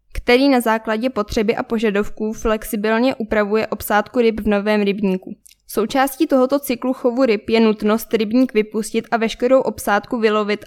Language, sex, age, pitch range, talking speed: Czech, female, 10-29, 210-245 Hz, 150 wpm